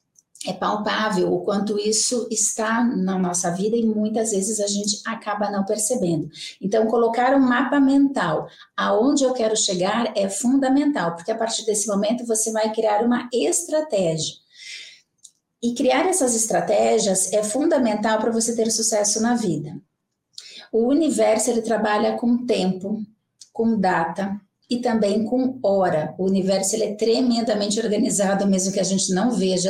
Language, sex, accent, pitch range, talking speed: Portuguese, female, Brazilian, 195-240 Hz, 150 wpm